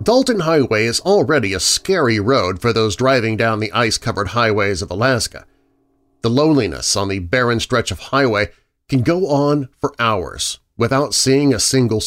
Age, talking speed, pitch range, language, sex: 40-59, 165 wpm, 115-160 Hz, English, male